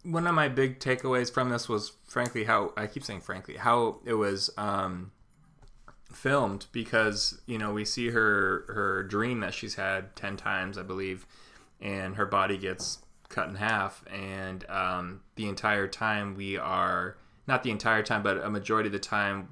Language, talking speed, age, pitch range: English, 180 wpm, 20-39, 95-115 Hz